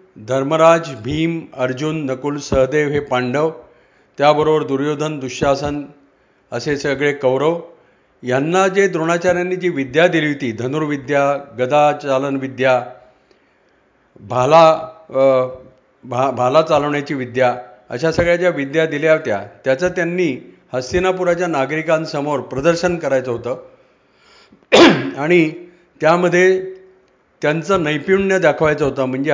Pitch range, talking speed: 135-170 Hz, 100 wpm